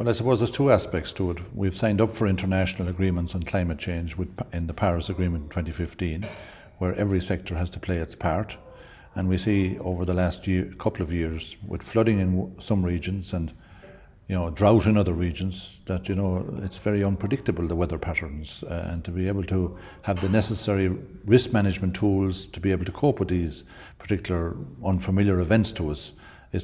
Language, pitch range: English, 85-100 Hz